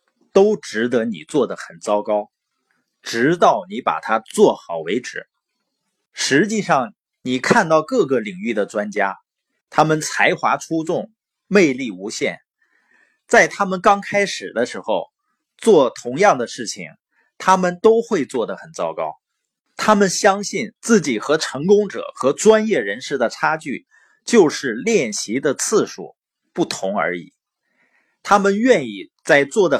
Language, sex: Chinese, male